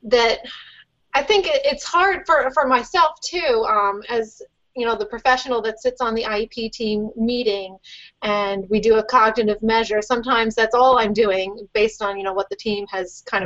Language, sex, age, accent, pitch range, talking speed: English, female, 30-49, American, 210-255 Hz, 185 wpm